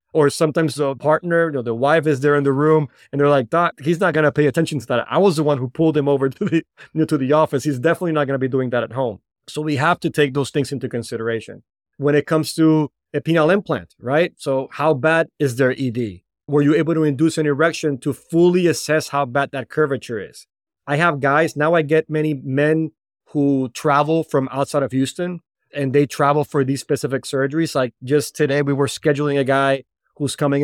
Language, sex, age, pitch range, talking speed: English, male, 30-49, 135-155 Hz, 235 wpm